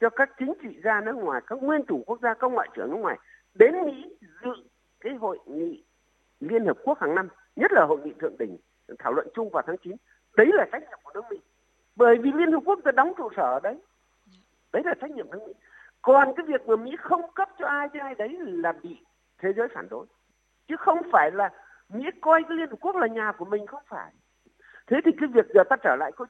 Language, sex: Vietnamese, male